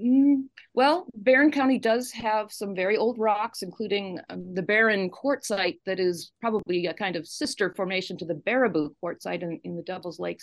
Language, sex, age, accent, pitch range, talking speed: English, female, 40-59, American, 175-235 Hz, 175 wpm